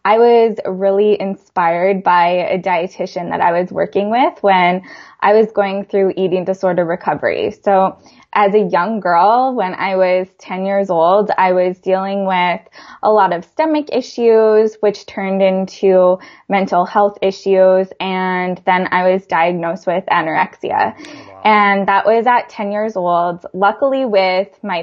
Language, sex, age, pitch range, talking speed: English, female, 10-29, 185-215 Hz, 150 wpm